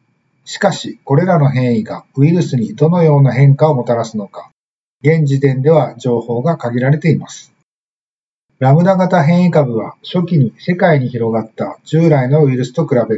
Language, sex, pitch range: Japanese, male, 125-160 Hz